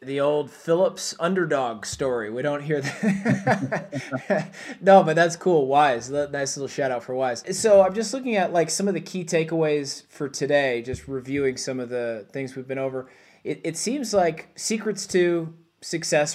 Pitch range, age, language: 135-165 Hz, 20-39, English